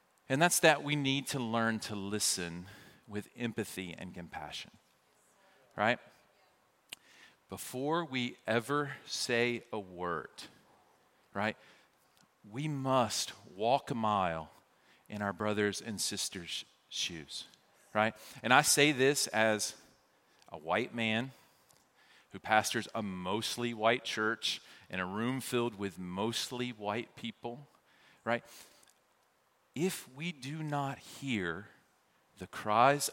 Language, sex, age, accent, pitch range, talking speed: English, male, 40-59, American, 110-140 Hz, 115 wpm